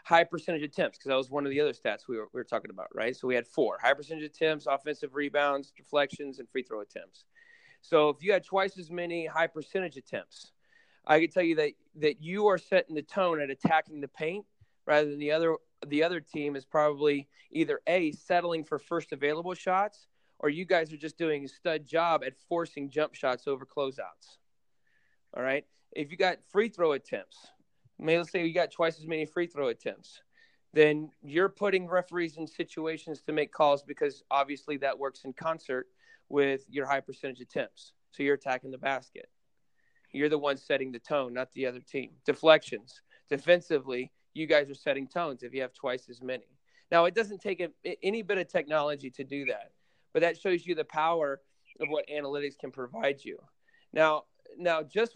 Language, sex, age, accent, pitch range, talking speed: English, male, 30-49, American, 140-175 Hz, 195 wpm